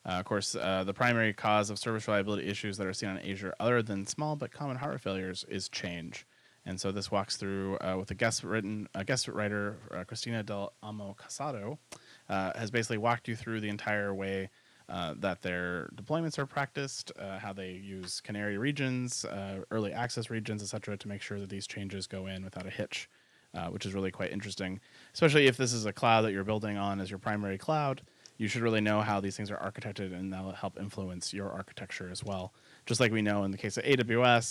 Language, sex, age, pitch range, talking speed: English, male, 30-49, 95-115 Hz, 220 wpm